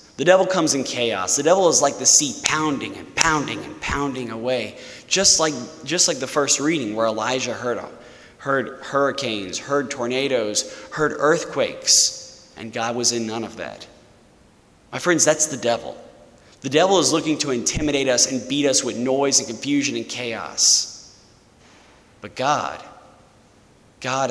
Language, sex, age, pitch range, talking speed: English, male, 30-49, 110-140 Hz, 155 wpm